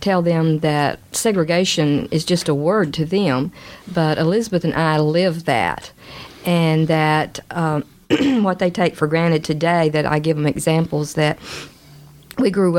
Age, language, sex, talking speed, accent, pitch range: 50-69, English, female, 155 wpm, American, 150-175 Hz